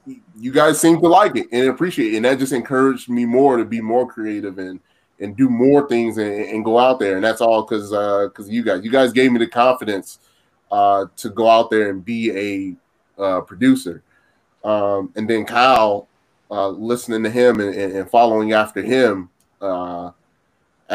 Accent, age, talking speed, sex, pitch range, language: American, 20-39, 190 wpm, male, 105-130 Hz, English